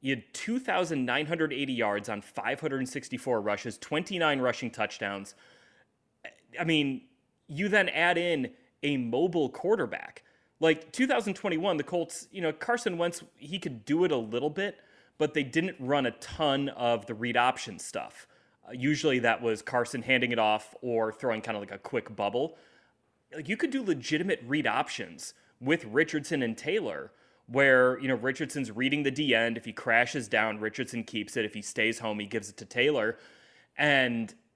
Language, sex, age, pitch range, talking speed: English, male, 30-49, 115-155 Hz, 170 wpm